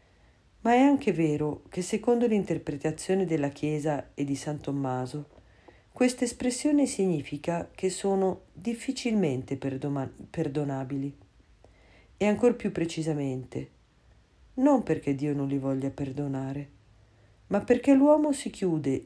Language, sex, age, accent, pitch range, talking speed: Italian, female, 50-69, native, 140-200 Hz, 115 wpm